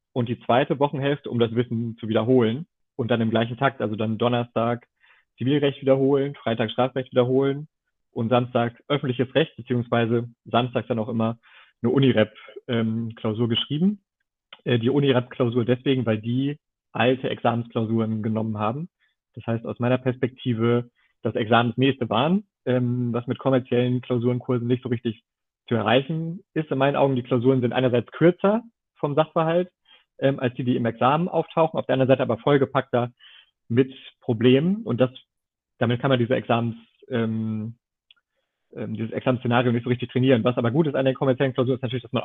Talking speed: 160 wpm